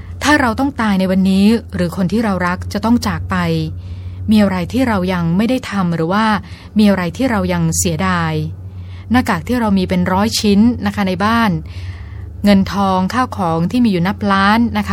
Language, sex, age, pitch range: Thai, female, 20-39, 145-210 Hz